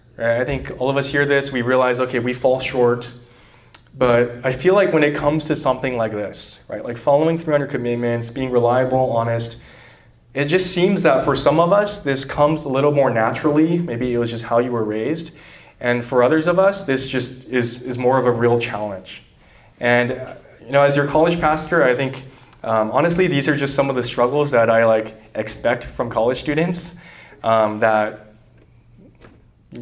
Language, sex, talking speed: English, male, 195 wpm